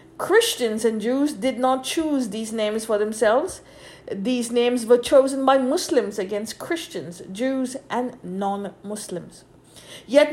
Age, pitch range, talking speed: 50-69, 215-275 Hz, 130 wpm